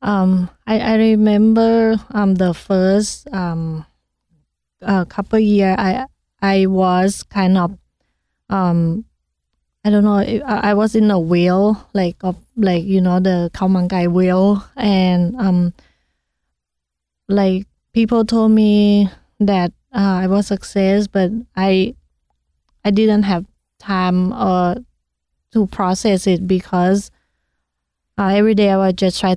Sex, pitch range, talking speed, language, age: female, 180-205 Hz, 130 wpm, English, 20-39